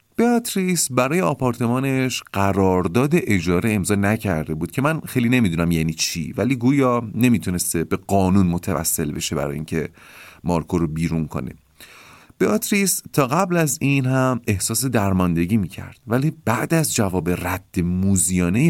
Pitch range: 90-145 Hz